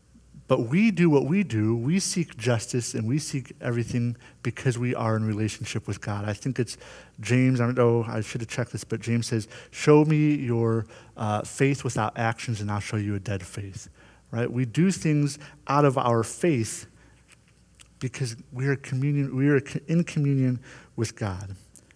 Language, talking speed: English, 185 wpm